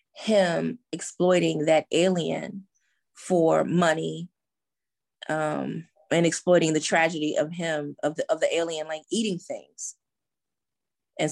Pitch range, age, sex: 160-195 Hz, 20-39, female